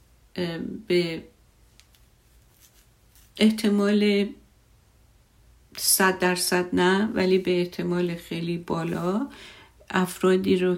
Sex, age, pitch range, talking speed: female, 50-69, 175-190 Hz, 65 wpm